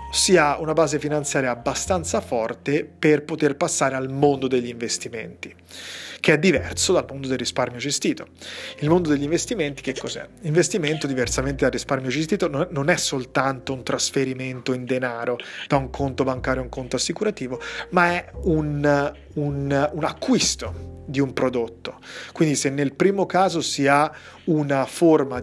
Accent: native